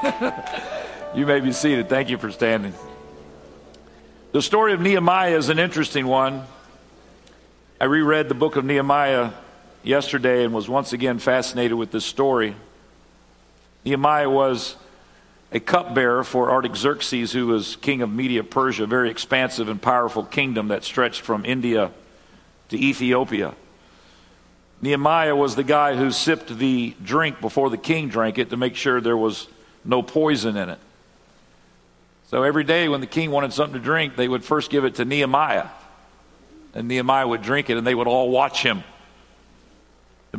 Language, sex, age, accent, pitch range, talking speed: English, male, 50-69, American, 110-140 Hz, 155 wpm